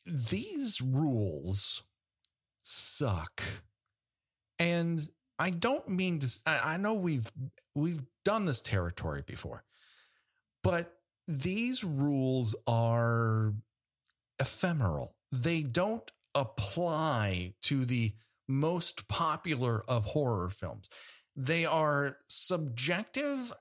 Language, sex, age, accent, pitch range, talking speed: English, male, 40-59, American, 115-165 Hz, 85 wpm